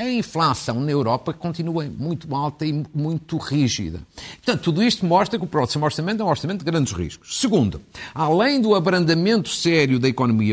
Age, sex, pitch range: 50-69, male, 110-165 Hz